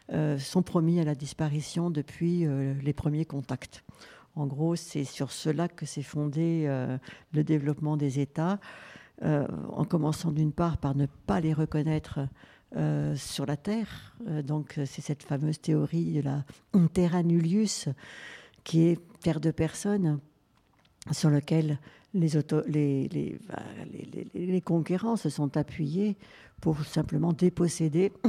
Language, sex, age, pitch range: French, female, 60-79, 145-175 Hz